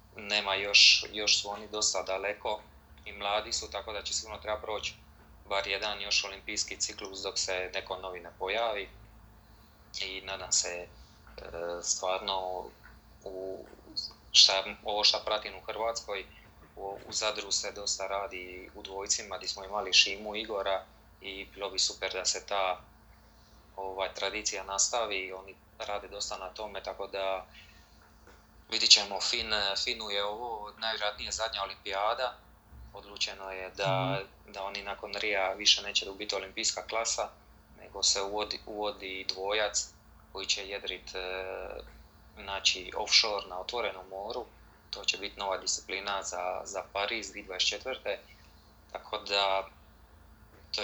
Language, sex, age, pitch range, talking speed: Croatian, male, 20-39, 90-105 Hz, 135 wpm